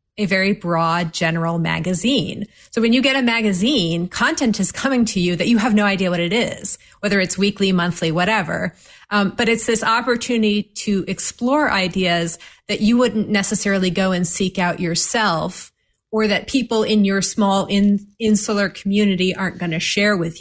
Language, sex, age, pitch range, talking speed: English, female, 30-49, 180-220 Hz, 175 wpm